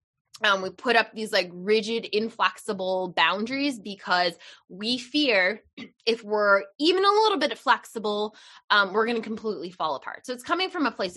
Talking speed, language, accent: 170 wpm, English, American